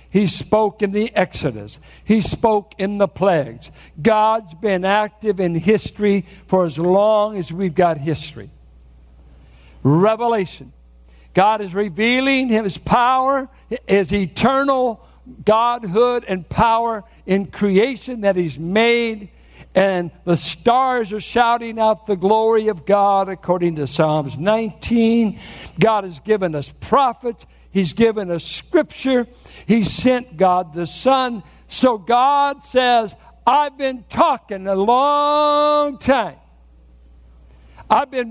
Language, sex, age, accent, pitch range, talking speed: English, male, 60-79, American, 175-250 Hz, 120 wpm